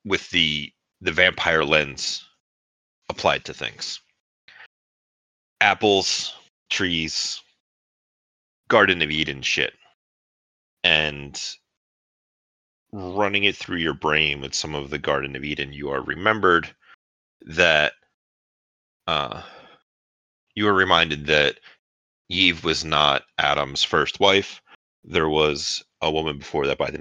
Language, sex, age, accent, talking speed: English, male, 30-49, American, 110 wpm